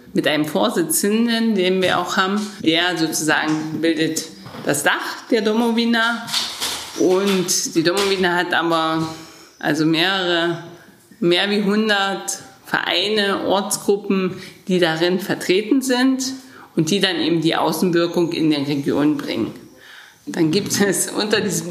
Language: German